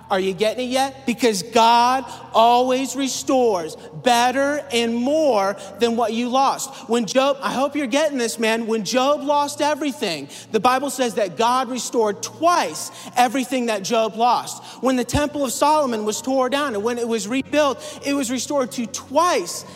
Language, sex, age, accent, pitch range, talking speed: English, male, 40-59, American, 200-260 Hz, 175 wpm